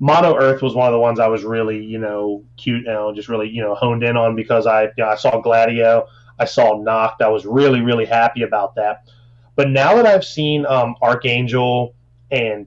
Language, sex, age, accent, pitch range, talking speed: English, male, 30-49, American, 115-130 Hz, 225 wpm